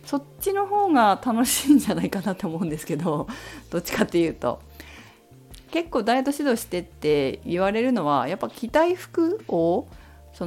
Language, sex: Japanese, female